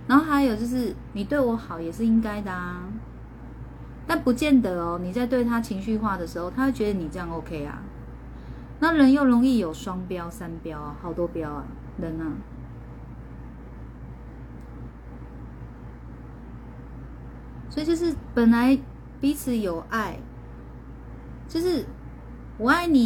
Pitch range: 155-235 Hz